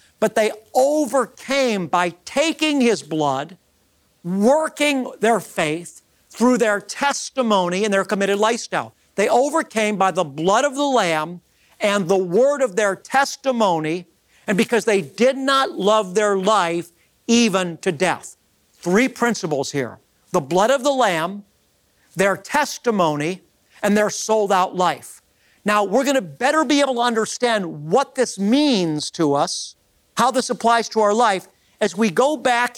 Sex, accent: male, American